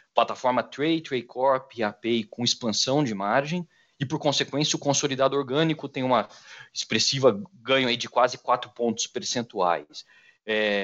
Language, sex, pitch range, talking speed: Portuguese, male, 105-135 Hz, 145 wpm